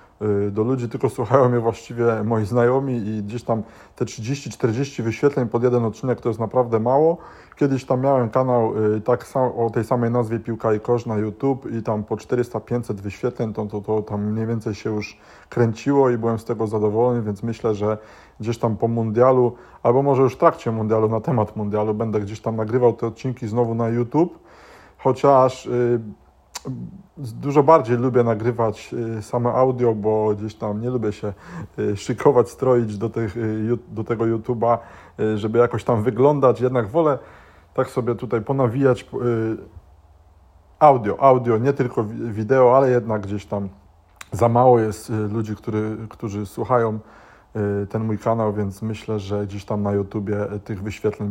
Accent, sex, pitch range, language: native, male, 110-125 Hz, Polish